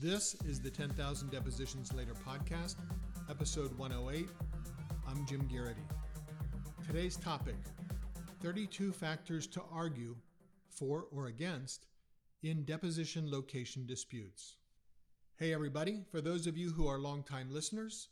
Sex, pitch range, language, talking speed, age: male, 130-170 Hz, English, 115 wpm, 50-69